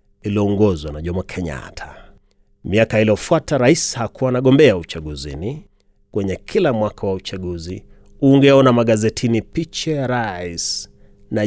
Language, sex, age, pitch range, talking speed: Swahili, male, 30-49, 90-125 Hz, 105 wpm